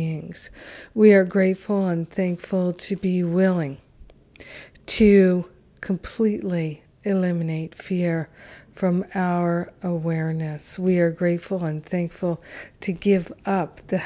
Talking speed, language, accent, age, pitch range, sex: 100 wpm, English, American, 50-69, 155-185 Hz, female